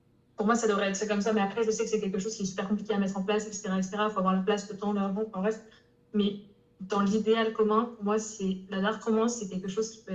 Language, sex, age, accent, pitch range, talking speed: French, female, 20-39, French, 210-230 Hz, 295 wpm